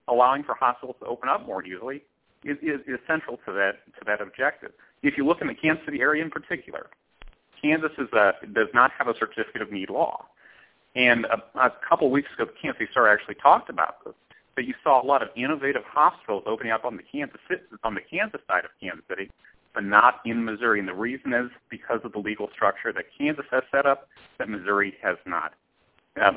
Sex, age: male, 40-59